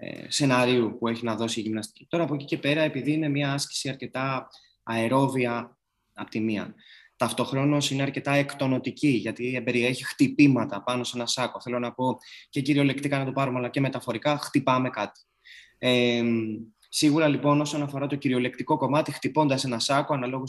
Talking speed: 165 wpm